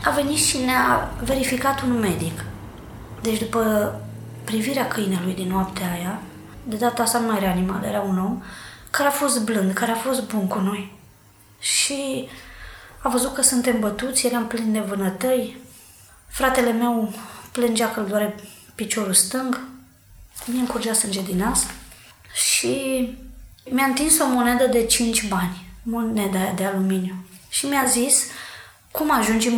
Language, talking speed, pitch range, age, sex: Romanian, 145 wpm, 195-255 Hz, 20-39, female